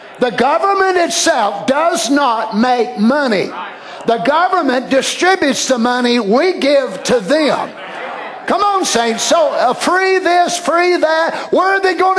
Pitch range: 230-335 Hz